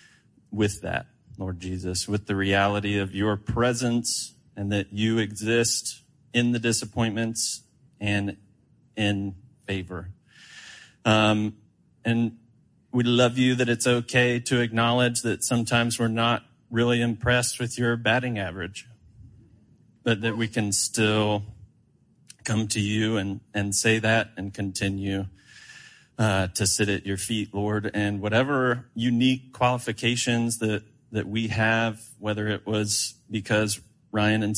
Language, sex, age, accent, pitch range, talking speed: English, male, 30-49, American, 105-120 Hz, 130 wpm